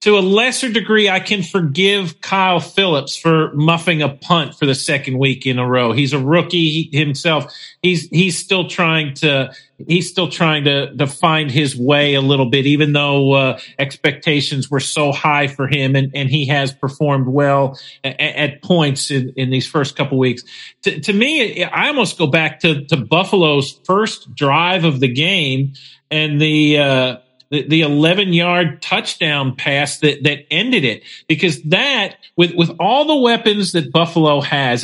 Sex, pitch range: male, 140-185 Hz